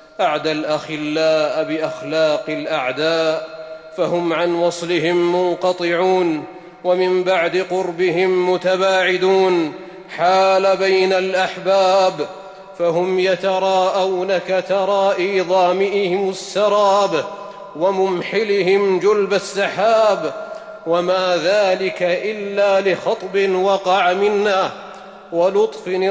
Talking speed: 70 wpm